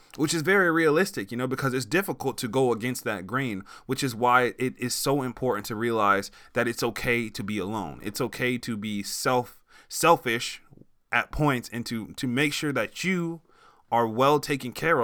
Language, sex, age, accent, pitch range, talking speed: English, male, 20-39, American, 115-145 Hz, 190 wpm